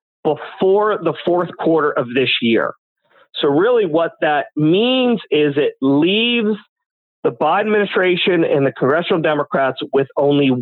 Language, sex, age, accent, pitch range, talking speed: English, male, 40-59, American, 140-195 Hz, 135 wpm